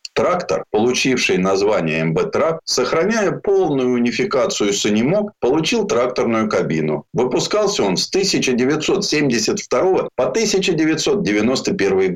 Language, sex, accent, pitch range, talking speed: Russian, male, native, 140-230 Hz, 90 wpm